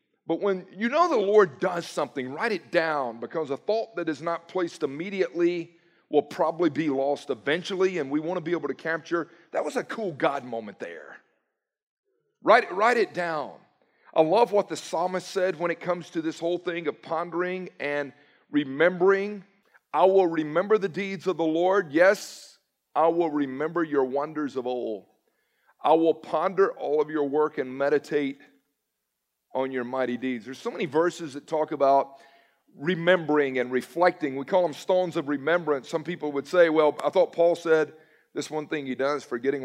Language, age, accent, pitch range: English, 40-59, American, 145-185 Hz